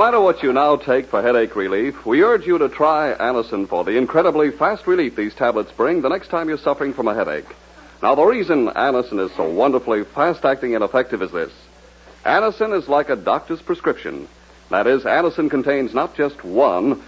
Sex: male